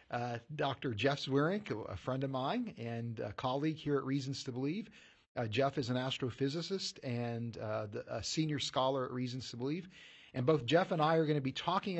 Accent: American